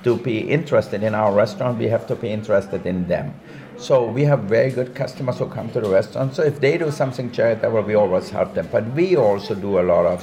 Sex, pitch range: male, 105-120 Hz